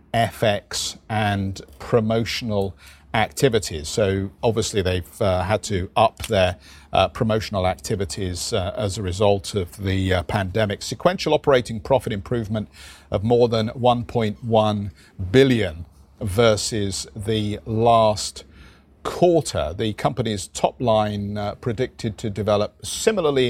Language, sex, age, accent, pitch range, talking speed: English, male, 50-69, British, 95-115 Hz, 115 wpm